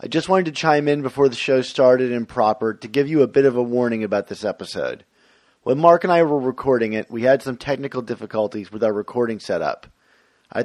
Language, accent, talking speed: English, American, 225 wpm